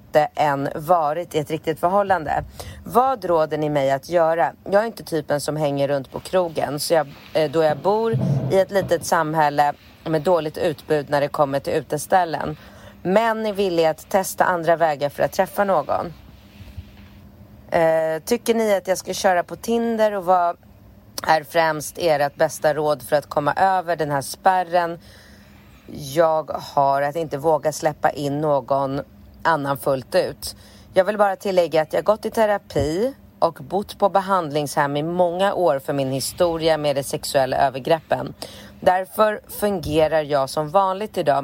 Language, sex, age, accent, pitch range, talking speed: Swedish, female, 30-49, native, 145-180 Hz, 165 wpm